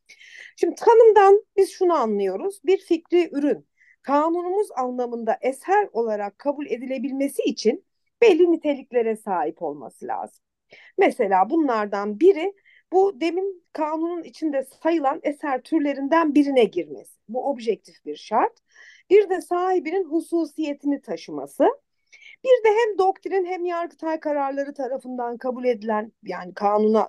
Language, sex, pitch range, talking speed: Turkish, female, 225-360 Hz, 115 wpm